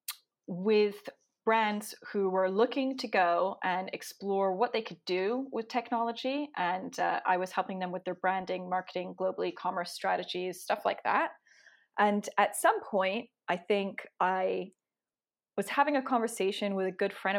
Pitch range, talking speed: 185-225 Hz, 160 wpm